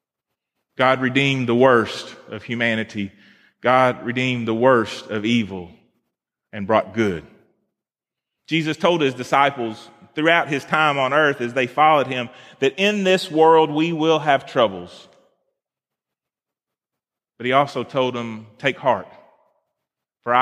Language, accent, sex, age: English, American, male, 30-49